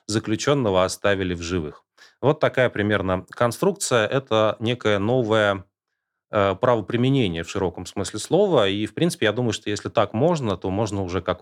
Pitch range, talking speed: 95-125 Hz, 160 wpm